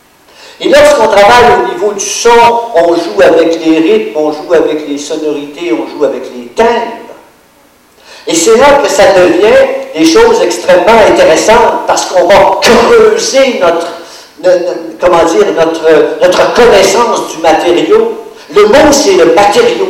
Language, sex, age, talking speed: French, male, 50-69, 155 wpm